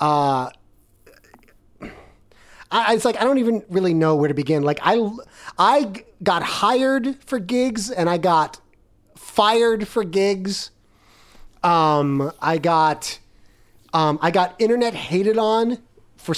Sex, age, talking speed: male, 30-49, 130 wpm